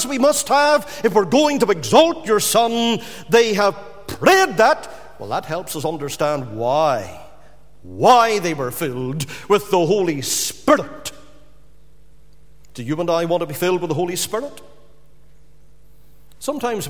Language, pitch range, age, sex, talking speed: English, 160-240 Hz, 50-69, male, 145 wpm